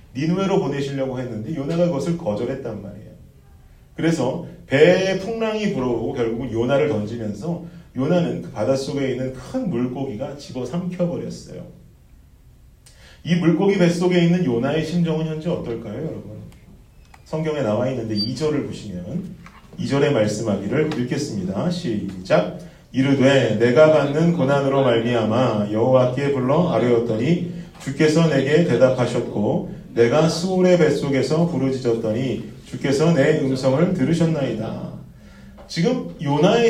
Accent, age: native, 40-59